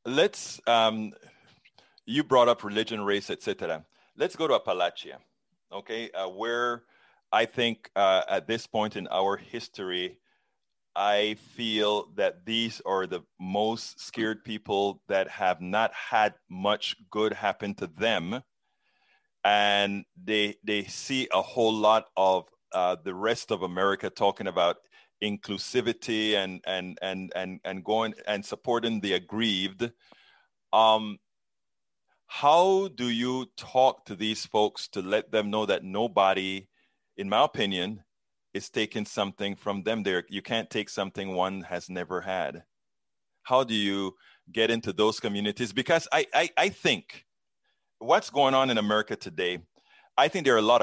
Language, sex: English, male